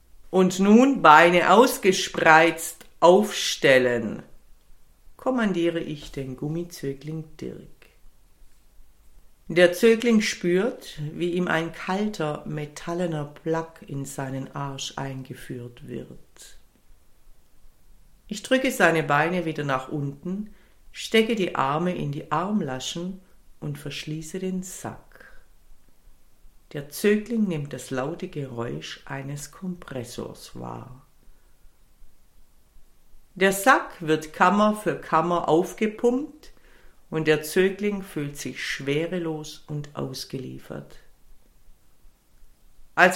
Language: German